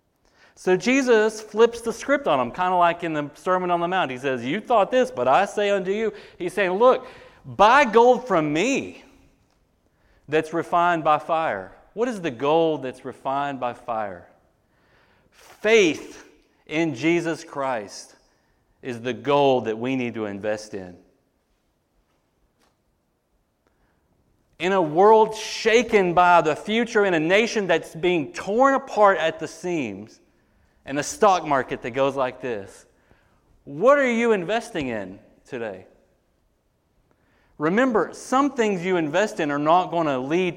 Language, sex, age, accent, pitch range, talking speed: English, male, 40-59, American, 130-190 Hz, 150 wpm